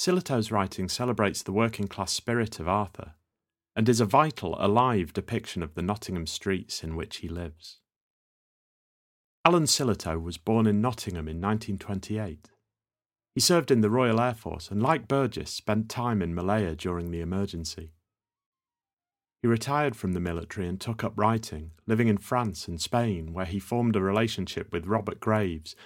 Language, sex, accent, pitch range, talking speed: English, male, British, 85-115 Hz, 160 wpm